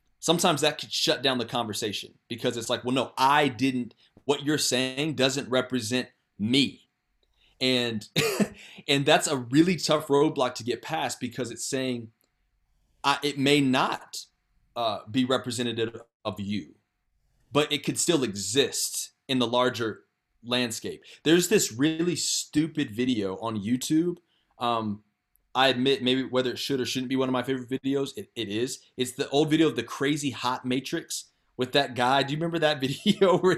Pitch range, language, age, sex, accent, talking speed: 120-150 Hz, English, 30-49, male, American, 170 wpm